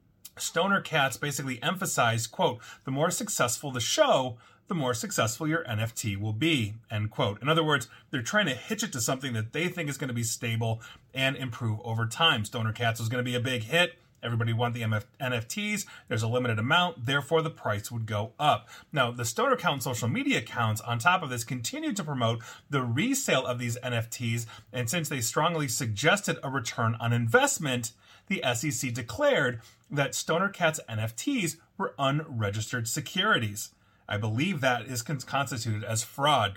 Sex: male